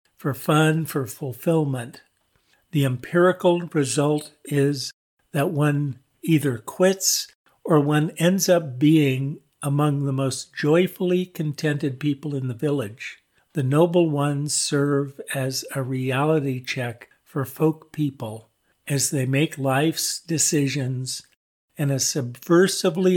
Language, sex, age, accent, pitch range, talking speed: English, male, 50-69, American, 135-160 Hz, 115 wpm